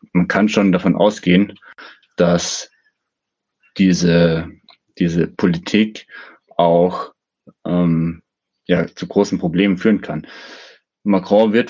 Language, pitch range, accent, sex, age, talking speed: German, 85-100 Hz, German, male, 20-39, 95 wpm